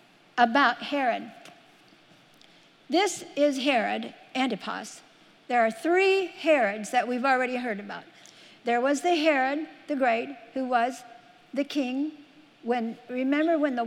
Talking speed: 125 wpm